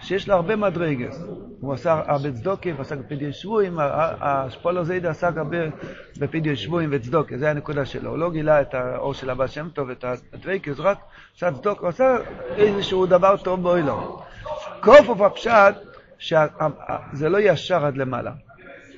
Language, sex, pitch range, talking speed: Hebrew, male, 145-190 Hz, 155 wpm